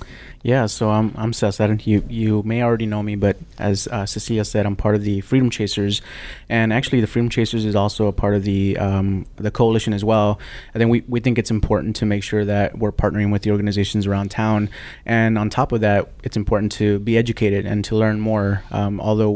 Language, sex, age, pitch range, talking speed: English, male, 30-49, 105-115 Hz, 225 wpm